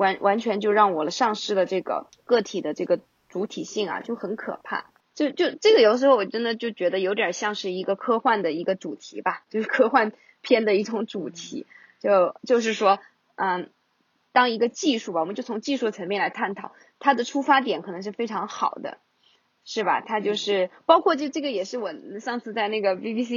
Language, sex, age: Chinese, female, 20-39